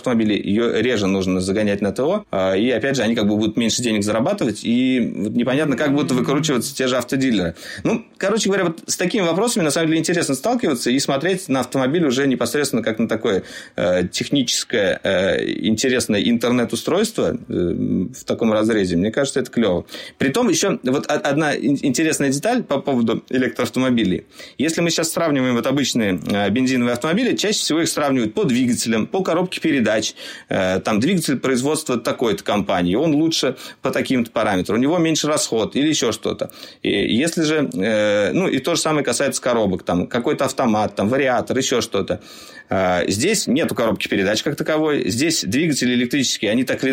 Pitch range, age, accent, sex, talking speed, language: 110-165 Hz, 30-49, native, male, 170 wpm, Russian